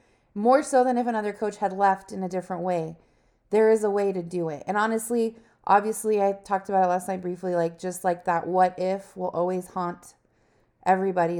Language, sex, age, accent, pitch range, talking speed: English, female, 20-39, American, 175-205 Hz, 205 wpm